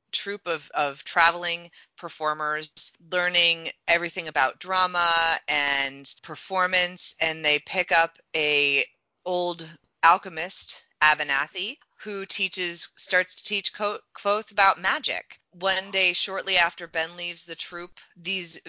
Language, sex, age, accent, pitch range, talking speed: English, female, 20-39, American, 145-175 Hz, 115 wpm